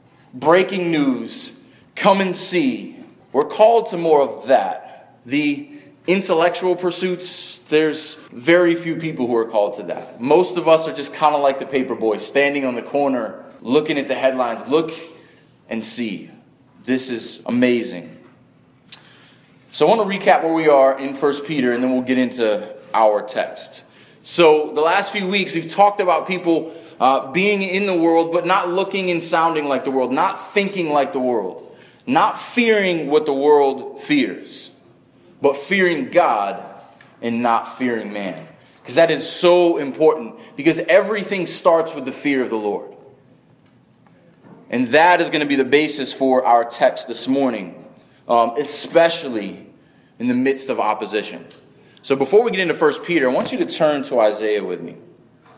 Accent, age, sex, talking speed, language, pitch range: American, 30-49, male, 170 wpm, English, 135-190 Hz